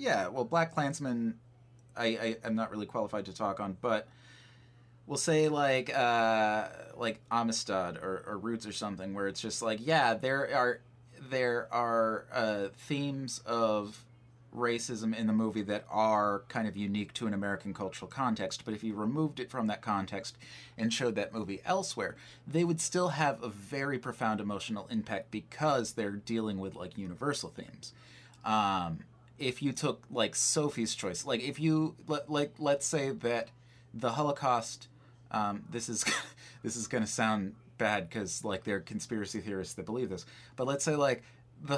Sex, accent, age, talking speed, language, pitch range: male, American, 30-49, 170 wpm, English, 105-125 Hz